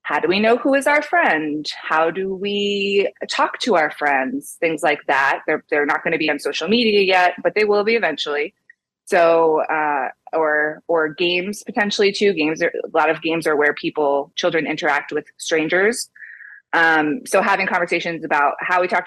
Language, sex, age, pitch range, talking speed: English, female, 20-39, 155-210 Hz, 185 wpm